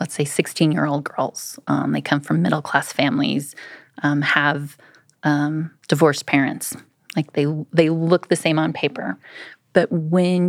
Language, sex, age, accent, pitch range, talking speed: English, female, 30-49, American, 155-180 Hz, 145 wpm